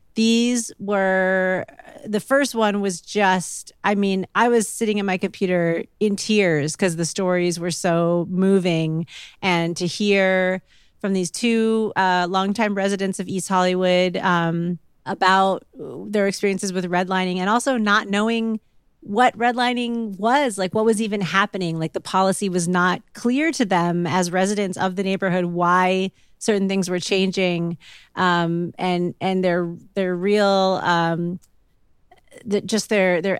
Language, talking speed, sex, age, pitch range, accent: English, 145 wpm, female, 30-49, 175-205 Hz, American